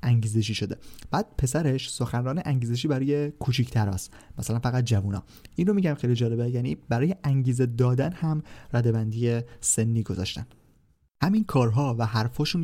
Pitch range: 110-135 Hz